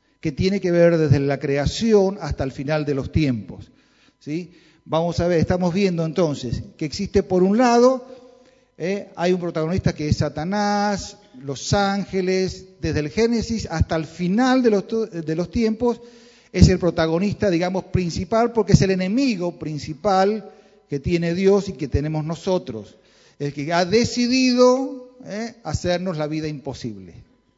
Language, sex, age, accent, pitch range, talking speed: Spanish, male, 40-59, Argentinian, 155-210 Hz, 145 wpm